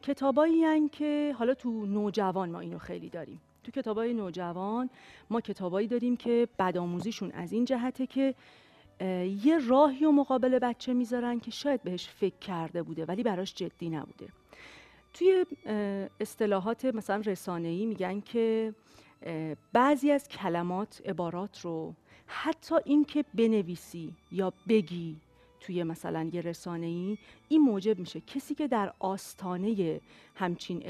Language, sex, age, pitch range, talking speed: Persian, female, 40-59, 180-245 Hz, 130 wpm